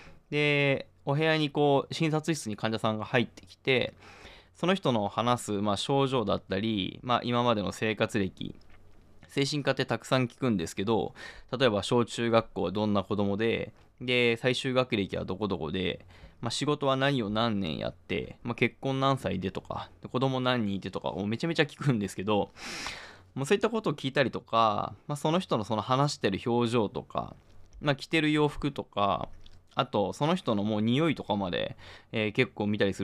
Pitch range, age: 105-140 Hz, 20-39